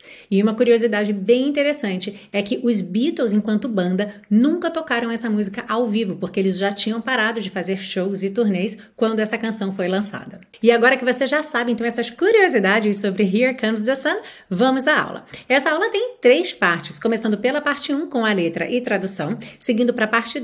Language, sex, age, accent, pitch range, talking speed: Portuguese, female, 30-49, Brazilian, 195-250 Hz, 195 wpm